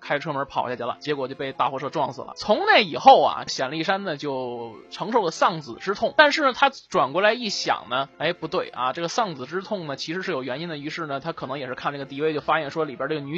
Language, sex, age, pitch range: Chinese, male, 20-39, 135-170 Hz